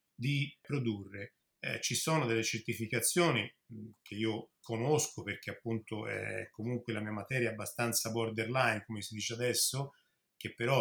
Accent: native